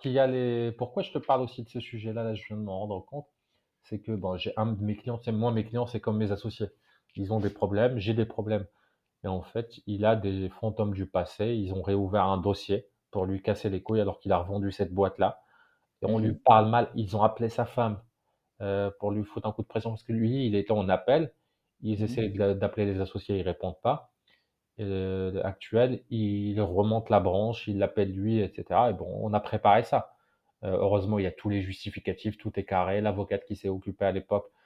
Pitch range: 100-115 Hz